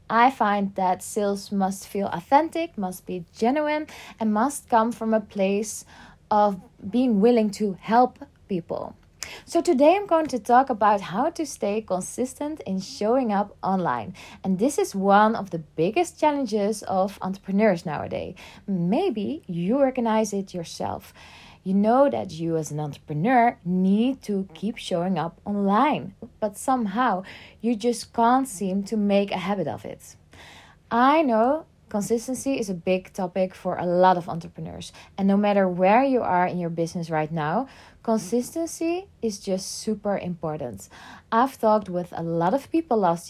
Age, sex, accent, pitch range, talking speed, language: 20-39, female, Dutch, 185-250 Hz, 160 wpm, Dutch